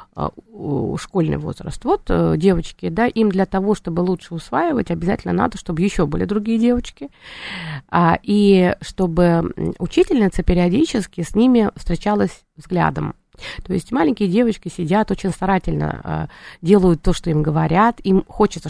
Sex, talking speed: female, 130 wpm